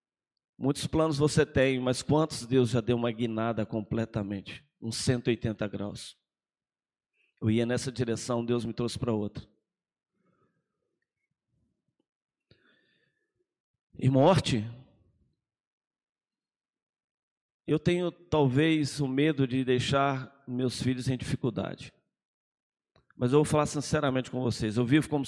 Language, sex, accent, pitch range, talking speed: Portuguese, male, Brazilian, 125-170 Hz, 110 wpm